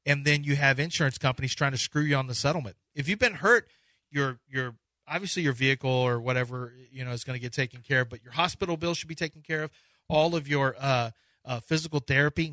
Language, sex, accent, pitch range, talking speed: English, male, American, 125-145 Hz, 235 wpm